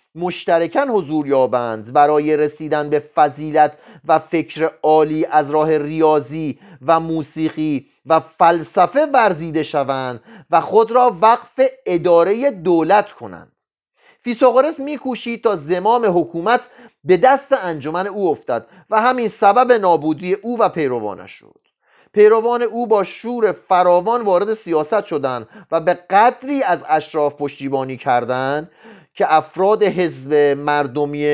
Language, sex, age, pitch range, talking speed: Persian, male, 40-59, 155-225 Hz, 120 wpm